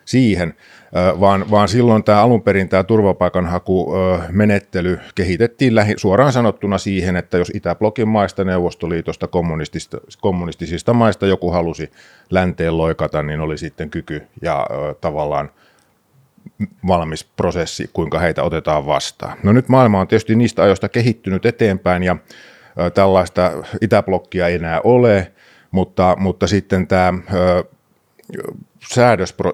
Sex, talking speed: male, 115 wpm